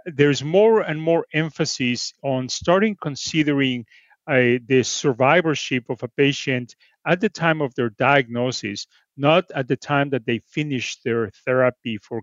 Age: 40-59